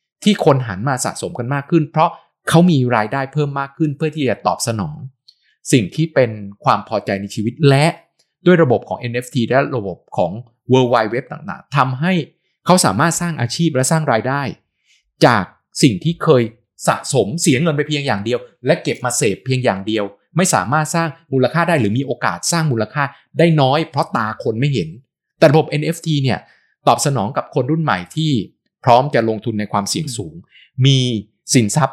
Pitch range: 115-160 Hz